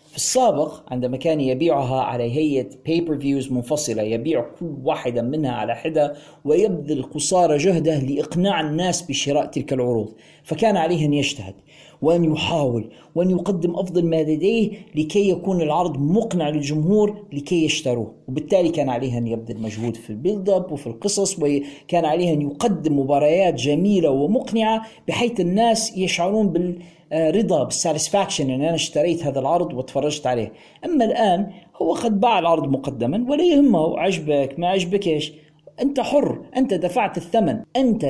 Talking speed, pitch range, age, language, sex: 140 wpm, 145-200 Hz, 40-59, Arabic, male